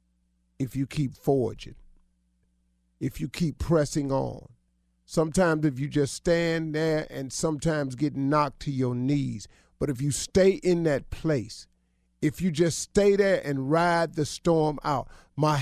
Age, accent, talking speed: 50-69, American, 155 wpm